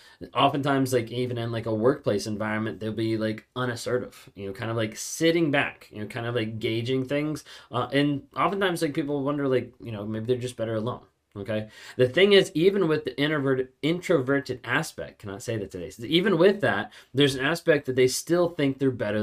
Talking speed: 210 wpm